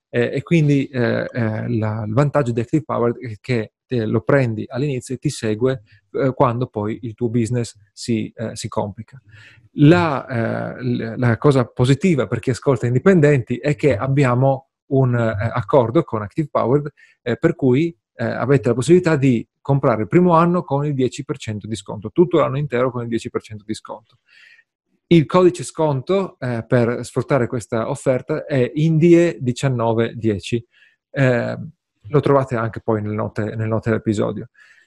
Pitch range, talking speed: 115-145 Hz, 155 wpm